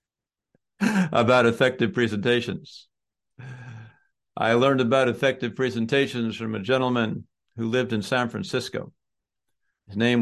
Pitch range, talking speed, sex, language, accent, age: 115-130 Hz, 105 wpm, male, English, American, 50-69